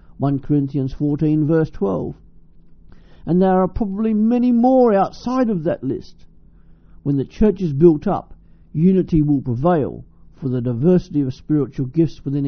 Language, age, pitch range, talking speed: English, 50-69, 125-170 Hz, 150 wpm